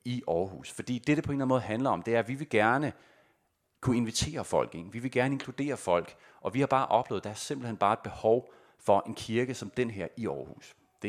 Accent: native